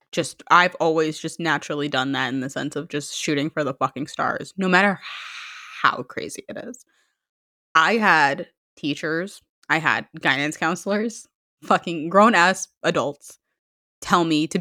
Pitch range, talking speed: 165-225 Hz, 150 wpm